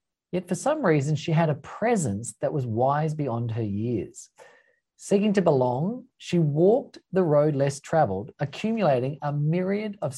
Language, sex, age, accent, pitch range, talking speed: English, male, 40-59, Australian, 135-195 Hz, 155 wpm